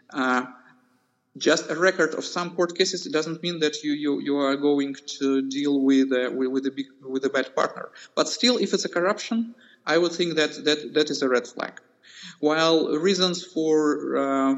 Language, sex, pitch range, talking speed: English, male, 140-175 Hz, 195 wpm